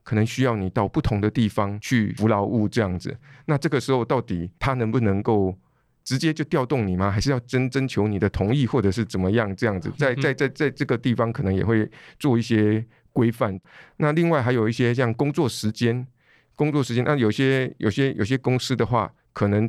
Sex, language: male, Chinese